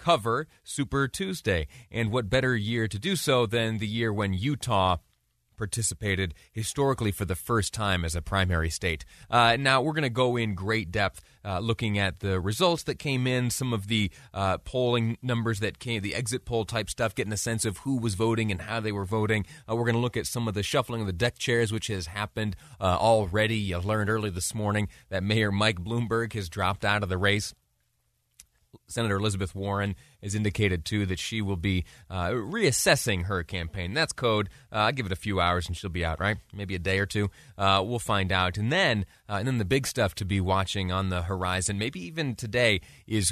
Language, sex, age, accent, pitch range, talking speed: English, male, 30-49, American, 95-120 Hz, 215 wpm